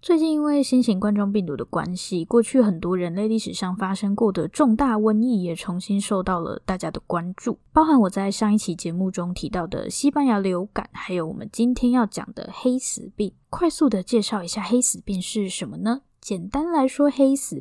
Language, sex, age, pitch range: Chinese, female, 10-29, 185-245 Hz